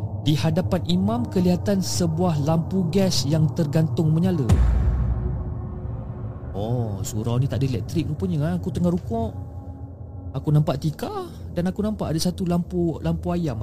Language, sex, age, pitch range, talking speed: Malay, male, 30-49, 105-145 Hz, 140 wpm